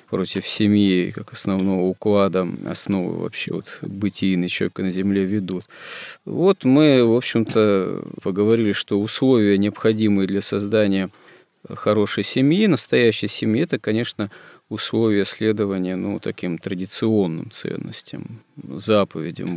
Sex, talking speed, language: male, 110 wpm, Russian